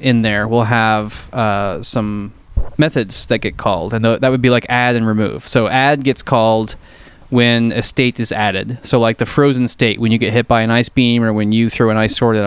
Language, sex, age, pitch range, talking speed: English, male, 20-39, 110-135 Hz, 230 wpm